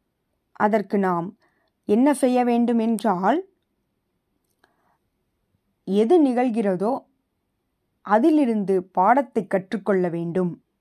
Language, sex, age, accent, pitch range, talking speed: Tamil, female, 20-39, native, 185-230 Hz, 65 wpm